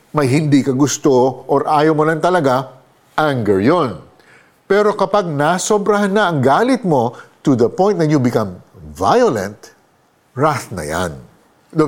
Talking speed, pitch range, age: 145 wpm, 120-170 Hz, 50-69